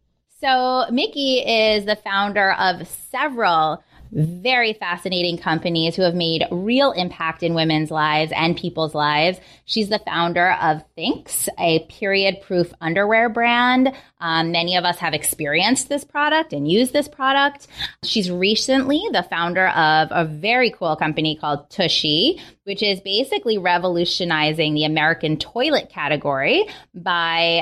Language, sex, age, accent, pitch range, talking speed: English, female, 20-39, American, 165-230 Hz, 135 wpm